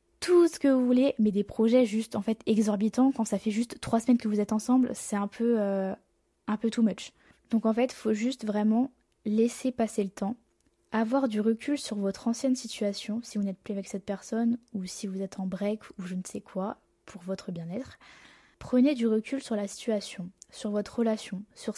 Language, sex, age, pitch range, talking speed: French, female, 10-29, 205-235 Hz, 220 wpm